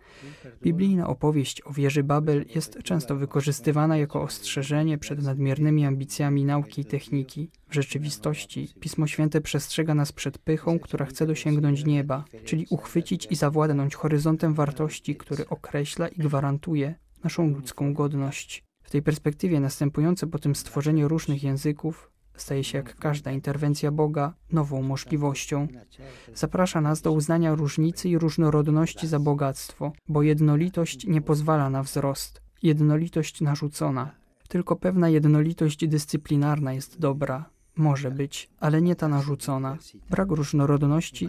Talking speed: 130 wpm